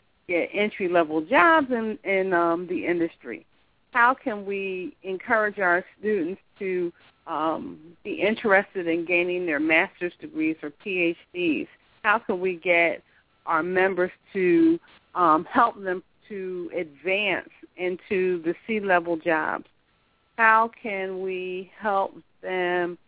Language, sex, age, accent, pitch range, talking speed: English, female, 40-59, American, 170-200 Hz, 120 wpm